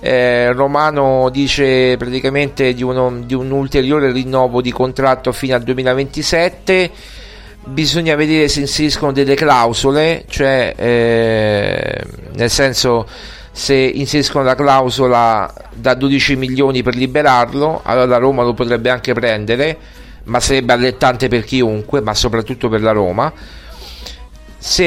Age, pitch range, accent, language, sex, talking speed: 40-59, 115-140 Hz, native, Italian, male, 125 wpm